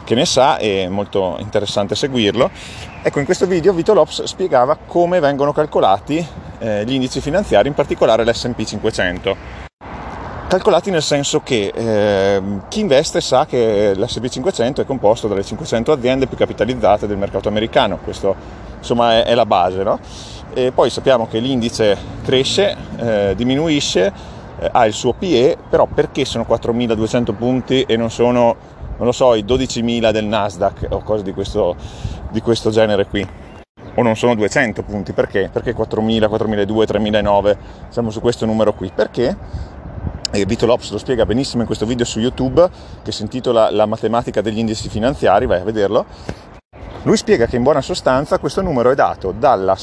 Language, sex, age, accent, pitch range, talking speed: Italian, male, 30-49, native, 105-130 Hz, 165 wpm